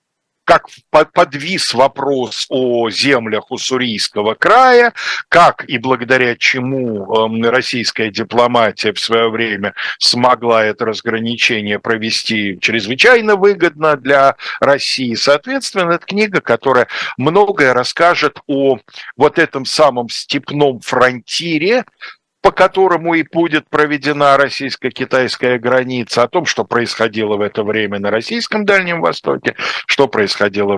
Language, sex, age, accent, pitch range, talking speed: Russian, male, 50-69, native, 110-155 Hz, 110 wpm